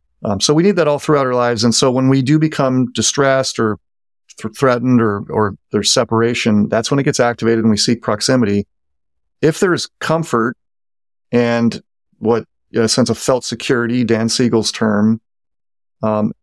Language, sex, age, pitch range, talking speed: English, male, 40-59, 105-125 Hz, 180 wpm